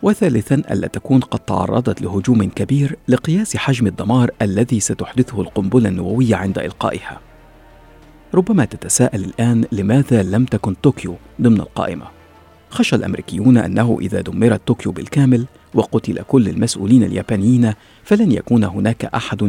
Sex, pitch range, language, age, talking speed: male, 95-120 Hz, Arabic, 50-69, 125 wpm